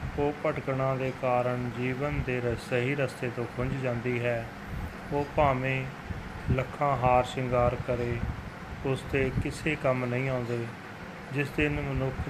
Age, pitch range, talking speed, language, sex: 30-49, 120-135 Hz, 130 wpm, Punjabi, male